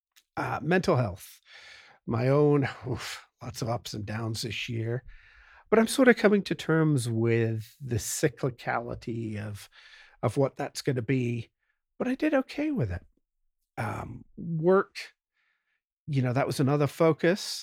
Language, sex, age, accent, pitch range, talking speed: English, male, 50-69, American, 120-165 Hz, 150 wpm